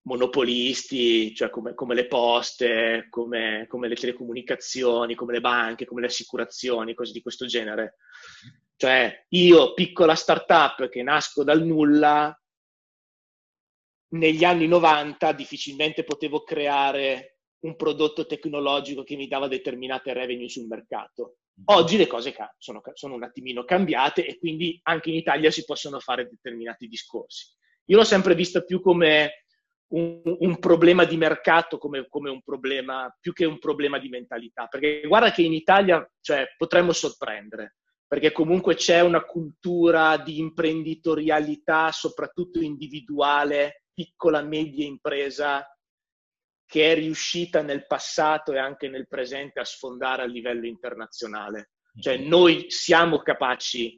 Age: 30-49